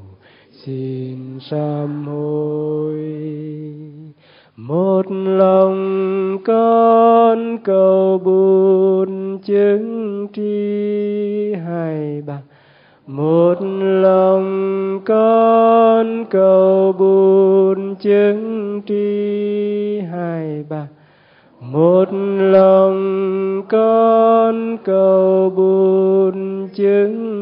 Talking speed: 55 wpm